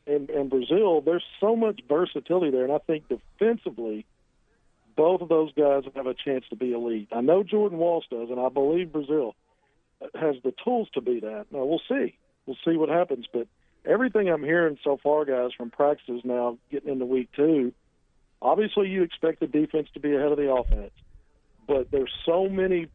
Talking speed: 195 wpm